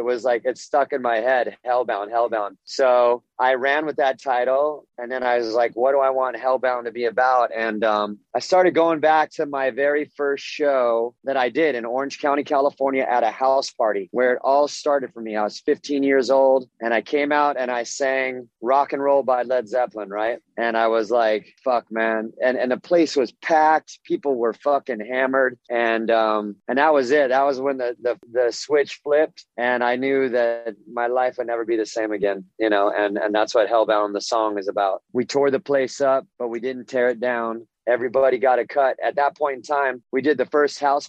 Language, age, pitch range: German, 30-49, 120-140 Hz